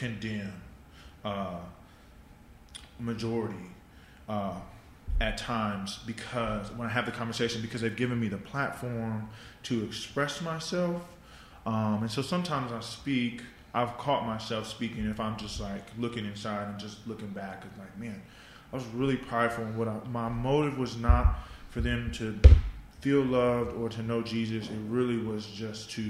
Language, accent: English, American